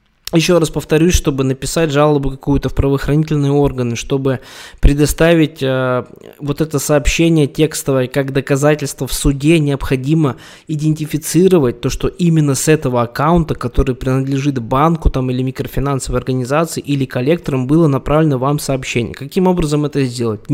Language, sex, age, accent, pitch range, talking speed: Russian, male, 20-39, native, 125-155 Hz, 130 wpm